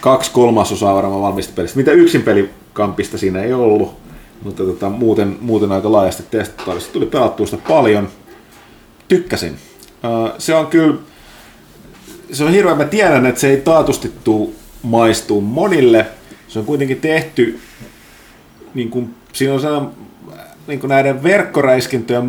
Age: 30-49